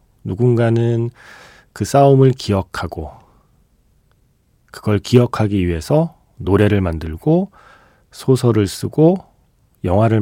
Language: Korean